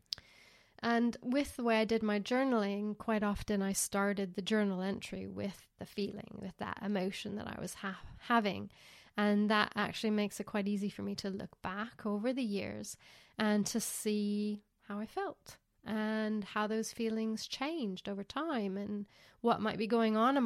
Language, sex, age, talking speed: English, female, 30-49, 175 wpm